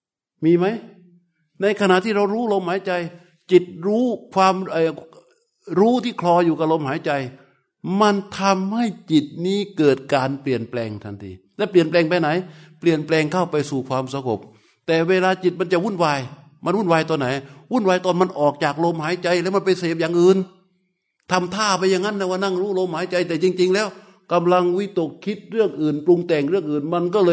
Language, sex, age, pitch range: Thai, male, 60-79, 140-185 Hz